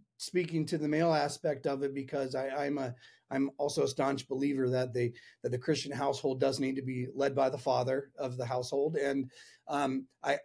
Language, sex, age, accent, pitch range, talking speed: English, male, 40-59, American, 135-165 Hz, 205 wpm